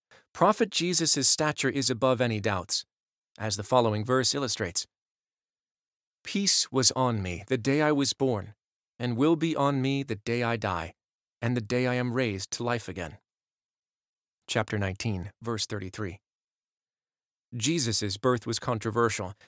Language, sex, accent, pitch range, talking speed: English, male, American, 105-130 Hz, 145 wpm